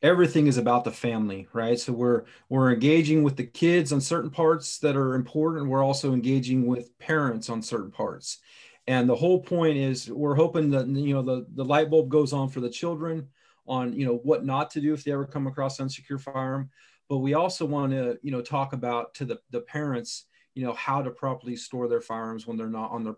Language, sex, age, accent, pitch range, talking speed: English, male, 40-59, American, 120-145 Hz, 225 wpm